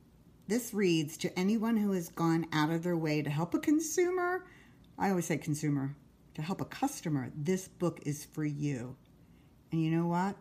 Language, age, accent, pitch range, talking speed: English, 50-69, American, 145-185 Hz, 185 wpm